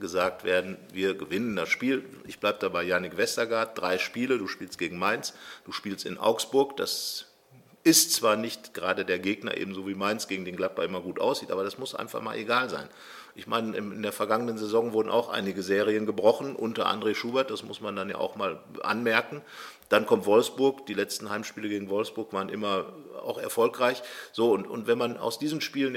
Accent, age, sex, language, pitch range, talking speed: German, 50-69, male, German, 105-150 Hz, 200 wpm